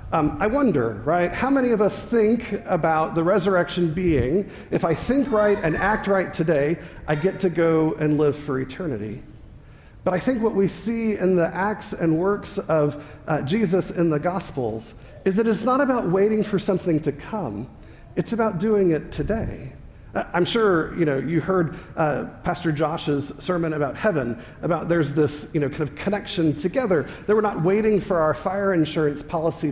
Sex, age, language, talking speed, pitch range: male, 40-59, English, 185 wpm, 150-200 Hz